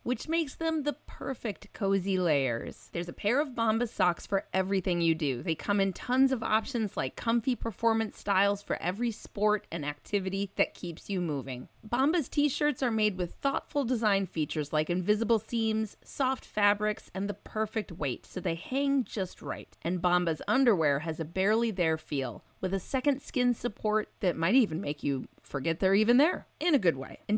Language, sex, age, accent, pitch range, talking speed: English, female, 30-49, American, 180-265 Hz, 185 wpm